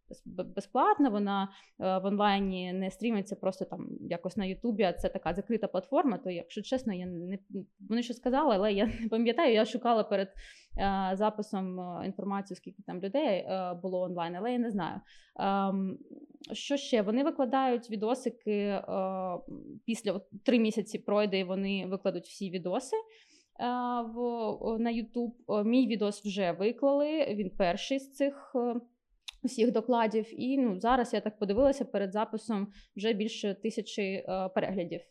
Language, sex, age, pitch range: Ukrainian, female, 20-39, 195-245 Hz